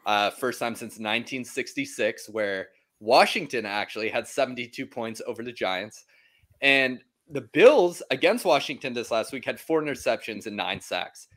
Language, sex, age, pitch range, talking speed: English, male, 20-39, 110-140 Hz, 150 wpm